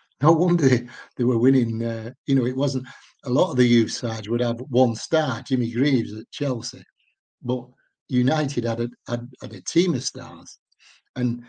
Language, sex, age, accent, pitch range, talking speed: English, male, 60-79, British, 115-130 Hz, 190 wpm